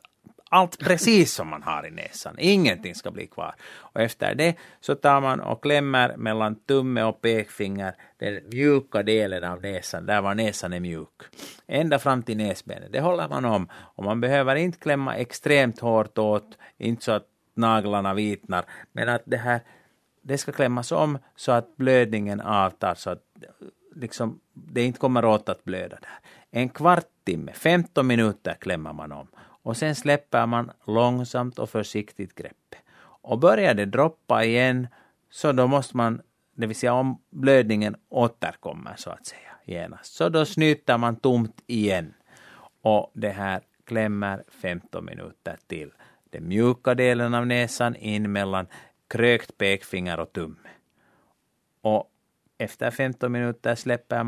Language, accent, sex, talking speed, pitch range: Danish, Finnish, male, 155 wpm, 105-130 Hz